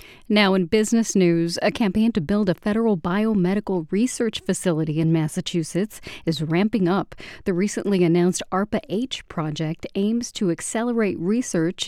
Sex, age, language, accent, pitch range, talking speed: female, 40-59, English, American, 170-215 Hz, 135 wpm